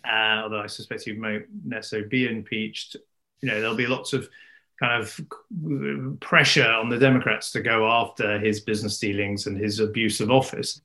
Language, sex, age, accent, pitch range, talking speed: English, male, 30-49, British, 115-155 Hz, 175 wpm